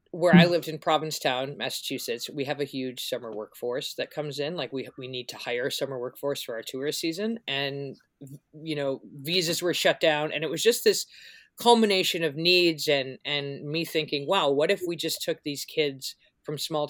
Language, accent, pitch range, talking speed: English, American, 145-185 Hz, 200 wpm